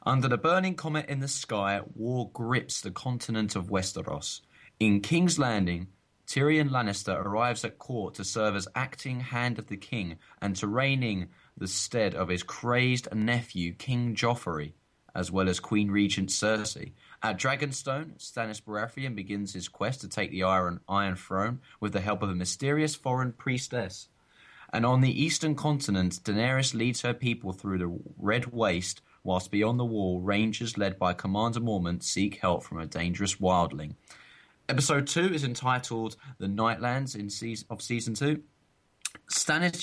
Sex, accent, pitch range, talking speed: male, British, 95-125 Hz, 160 wpm